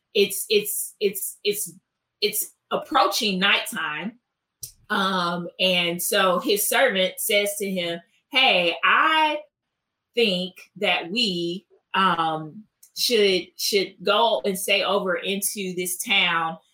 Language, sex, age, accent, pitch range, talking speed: English, female, 20-39, American, 180-220 Hz, 110 wpm